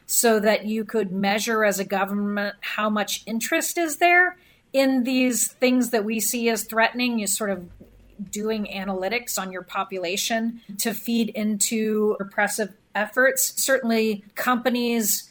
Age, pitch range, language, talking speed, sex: 40-59, 200-225 Hz, English, 140 wpm, female